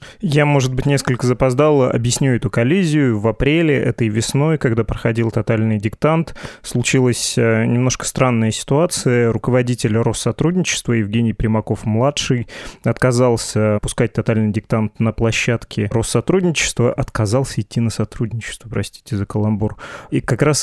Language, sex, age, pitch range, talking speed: Russian, male, 20-39, 110-130 Hz, 120 wpm